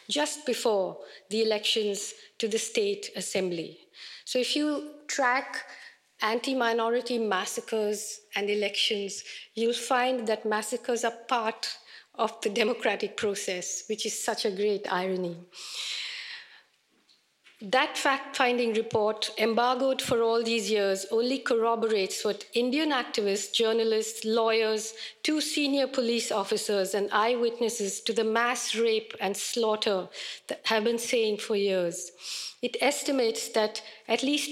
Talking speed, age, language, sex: 120 wpm, 50-69, English, female